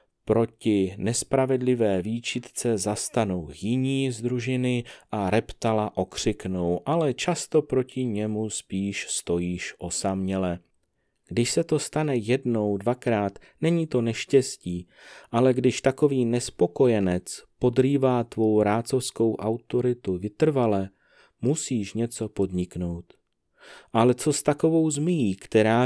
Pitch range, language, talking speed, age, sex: 110-130 Hz, Czech, 100 wpm, 30-49, male